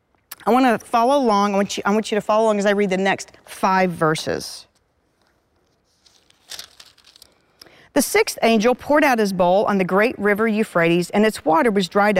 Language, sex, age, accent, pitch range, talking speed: English, female, 40-59, American, 190-250 Hz, 175 wpm